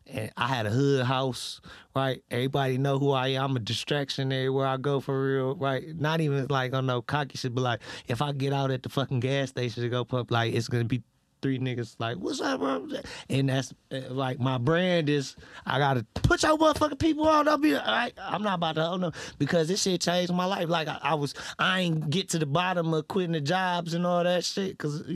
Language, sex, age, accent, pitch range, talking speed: English, male, 30-49, American, 130-165 Hz, 235 wpm